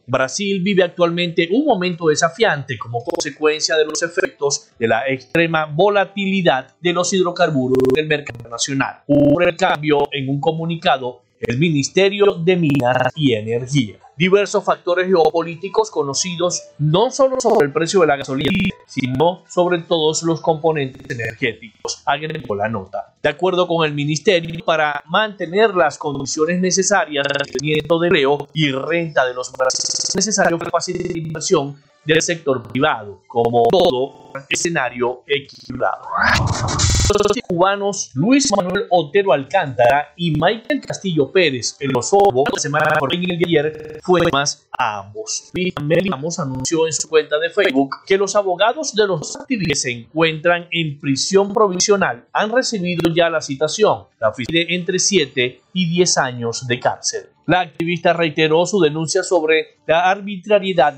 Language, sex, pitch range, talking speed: Spanish, male, 140-185 Hz, 145 wpm